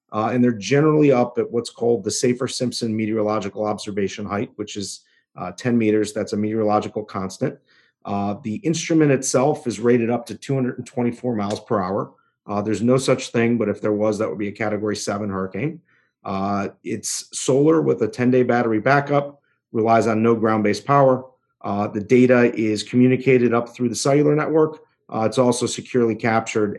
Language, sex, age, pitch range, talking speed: English, male, 40-59, 105-125 Hz, 175 wpm